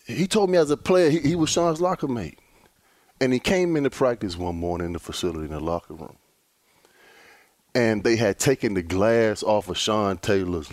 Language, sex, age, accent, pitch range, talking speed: English, male, 30-49, American, 95-145 Hz, 200 wpm